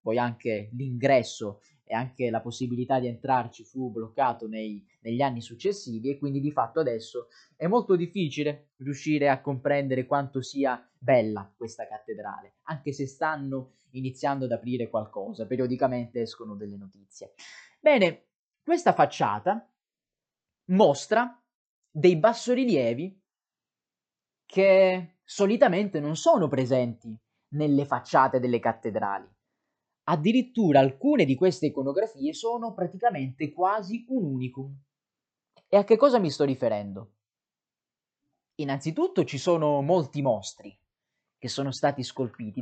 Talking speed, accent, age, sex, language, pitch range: 115 wpm, native, 20-39, male, Italian, 130-190 Hz